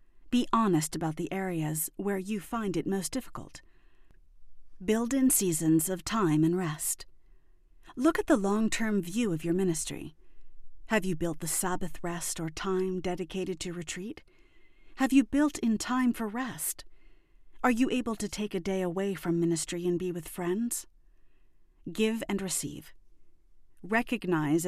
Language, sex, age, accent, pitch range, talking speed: English, female, 40-59, American, 170-235 Hz, 150 wpm